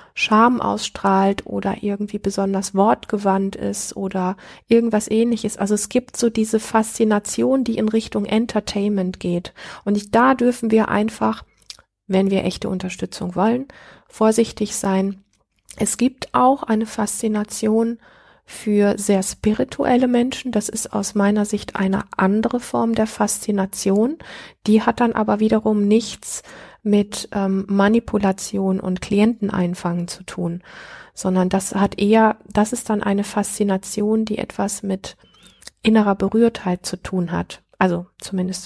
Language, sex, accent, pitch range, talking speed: German, female, German, 195-225 Hz, 130 wpm